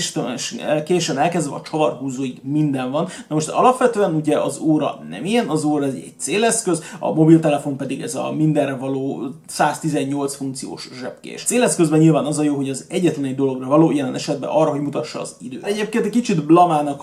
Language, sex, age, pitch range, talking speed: Hungarian, male, 30-49, 145-170 Hz, 185 wpm